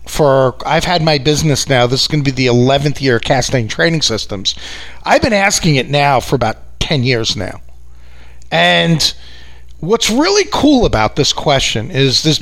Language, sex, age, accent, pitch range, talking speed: English, male, 40-59, American, 130-180 Hz, 175 wpm